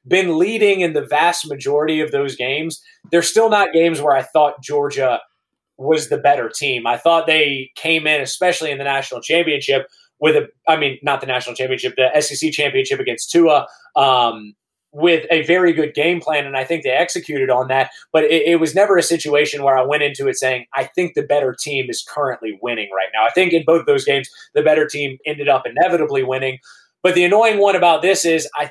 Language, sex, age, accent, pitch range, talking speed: English, male, 20-39, American, 140-170 Hz, 210 wpm